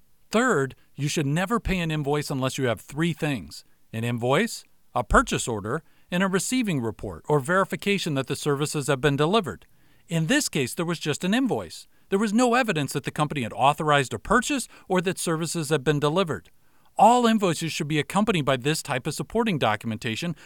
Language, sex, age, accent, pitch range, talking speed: English, male, 40-59, American, 135-185 Hz, 190 wpm